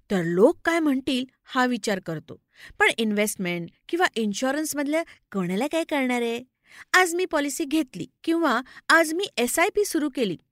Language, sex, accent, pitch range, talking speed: Marathi, female, native, 225-335 Hz, 135 wpm